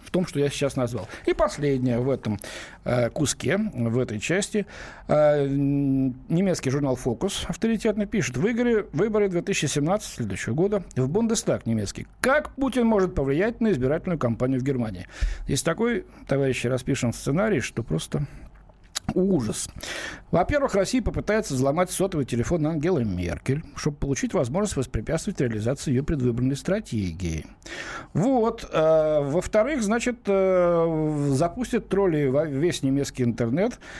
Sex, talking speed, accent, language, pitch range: male, 120 wpm, native, Russian, 125-195 Hz